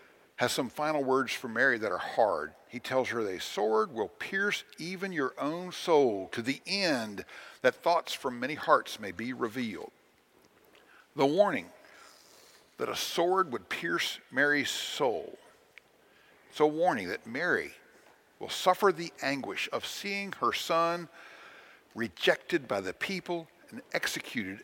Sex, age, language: male, 60-79, English